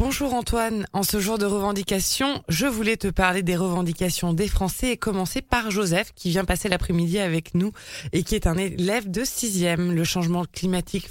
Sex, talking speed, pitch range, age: female, 190 wpm, 170-210 Hz, 20-39